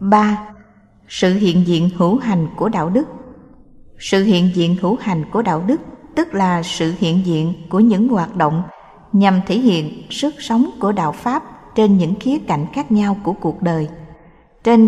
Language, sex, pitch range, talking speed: Vietnamese, female, 170-230 Hz, 180 wpm